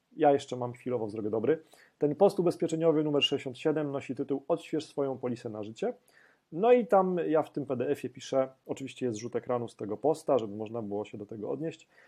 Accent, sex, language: native, male, Polish